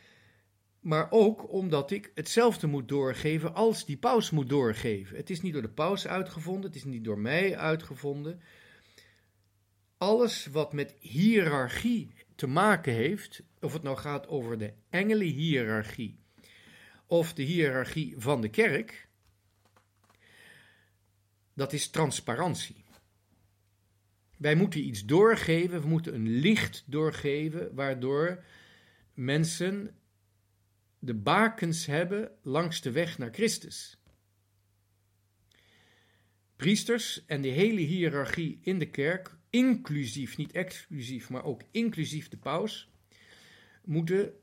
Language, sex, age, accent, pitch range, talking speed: Dutch, male, 50-69, Dutch, 110-175 Hz, 115 wpm